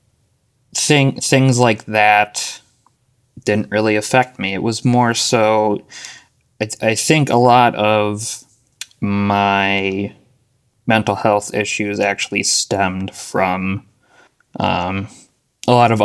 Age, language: 20-39, English